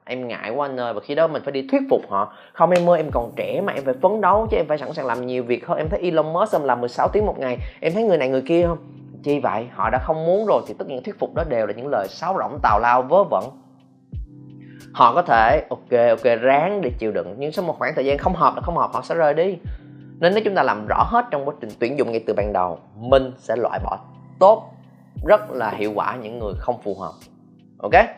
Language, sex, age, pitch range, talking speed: Vietnamese, male, 20-39, 105-145 Hz, 270 wpm